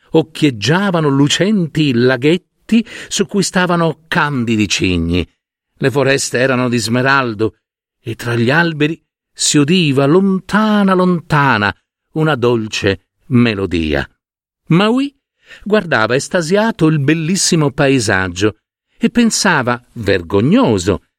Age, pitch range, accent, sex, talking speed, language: 50-69, 120-175 Hz, native, male, 95 wpm, Italian